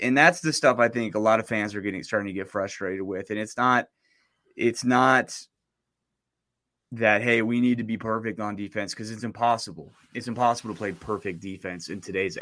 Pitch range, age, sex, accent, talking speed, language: 110-135 Hz, 20-39, male, American, 205 wpm, English